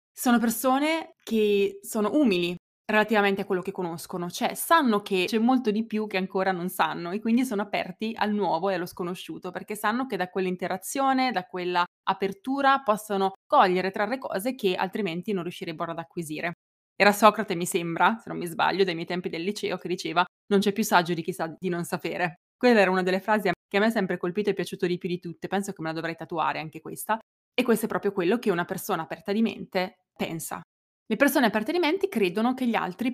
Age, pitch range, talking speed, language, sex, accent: 20-39, 180-220 Hz, 220 wpm, Italian, female, native